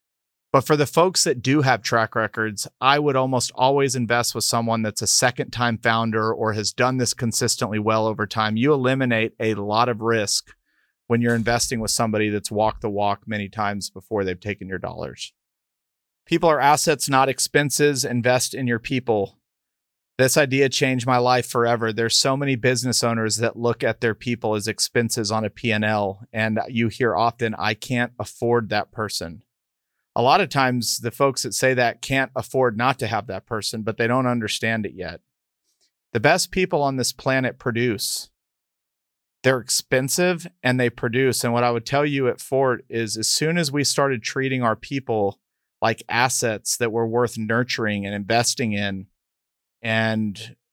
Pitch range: 110-130 Hz